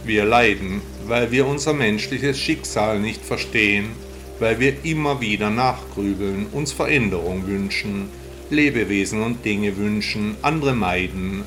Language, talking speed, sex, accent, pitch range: German, 120 wpm, male, German, 85-120 Hz